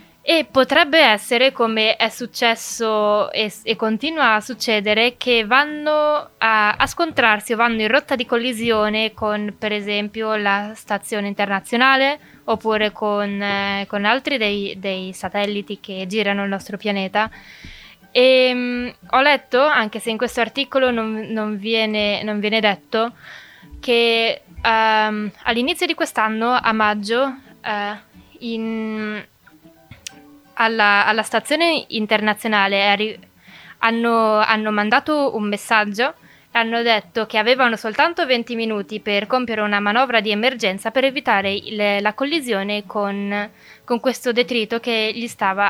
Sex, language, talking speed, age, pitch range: female, Italian, 130 wpm, 20-39, 210-245 Hz